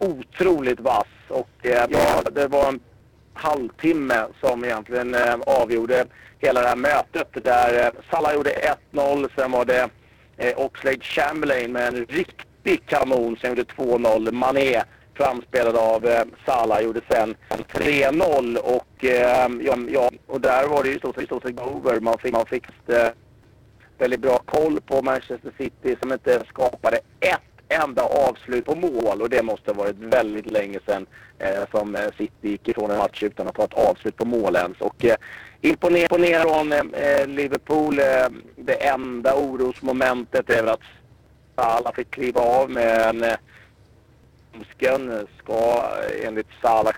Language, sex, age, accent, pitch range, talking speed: Swedish, male, 40-59, native, 115-135 Hz, 155 wpm